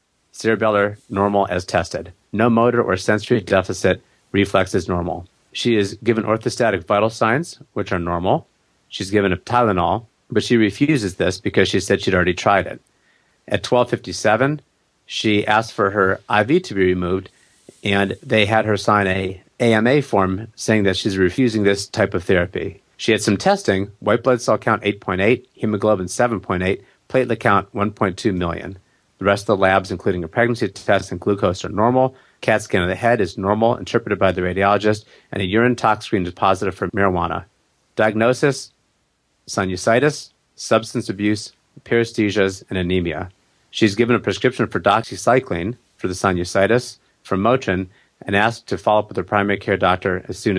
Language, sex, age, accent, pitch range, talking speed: English, male, 40-59, American, 95-115 Hz, 165 wpm